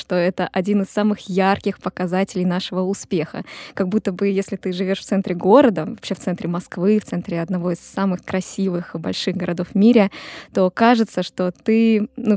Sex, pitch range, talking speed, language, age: female, 190-235 Hz, 180 wpm, Russian, 20-39